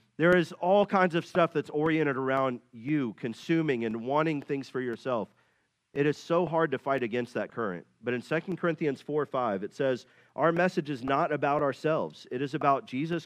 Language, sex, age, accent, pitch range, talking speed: English, male, 40-59, American, 120-155 Hz, 195 wpm